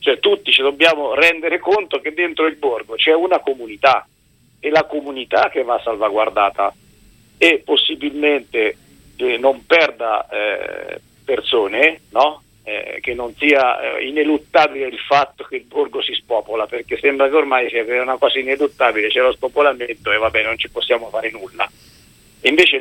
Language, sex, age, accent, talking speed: Italian, male, 50-69, native, 160 wpm